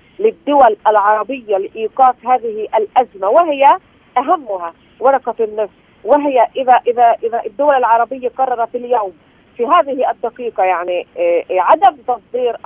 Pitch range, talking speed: 215-305 Hz, 110 wpm